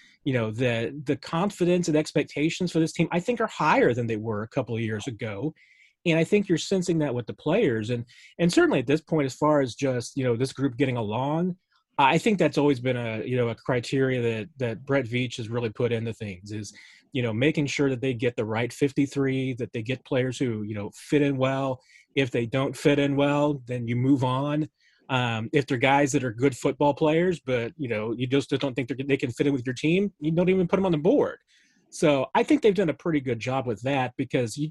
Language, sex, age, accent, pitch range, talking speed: English, male, 30-49, American, 125-155 Hz, 245 wpm